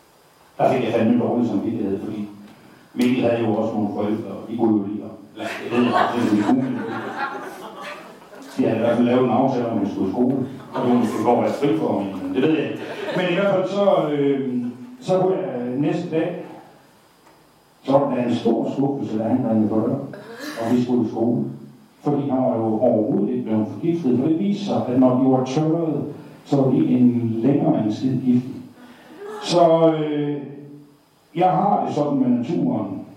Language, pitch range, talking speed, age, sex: Danish, 125-175 Hz, 210 wpm, 60-79, male